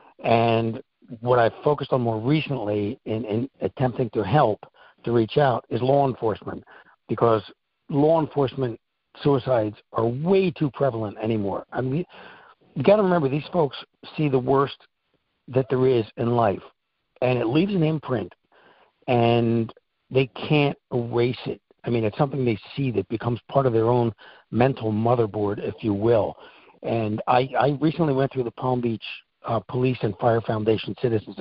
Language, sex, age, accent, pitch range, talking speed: English, male, 60-79, American, 110-135 Hz, 160 wpm